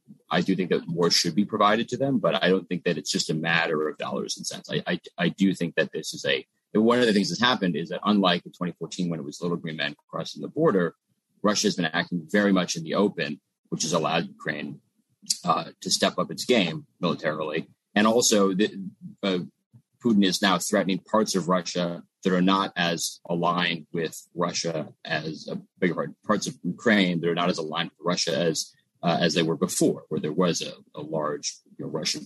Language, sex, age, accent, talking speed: English, male, 30-49, American, 225 wpm